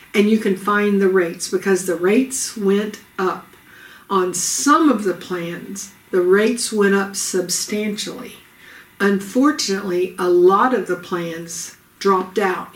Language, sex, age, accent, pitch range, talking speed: English, female, 60-79, American, 185-230 Hz, 135 wpm